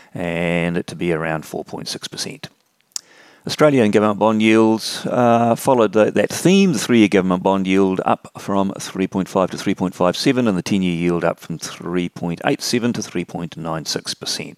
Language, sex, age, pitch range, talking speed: English, male, 40-59, 85-110 Hz, 130 wpm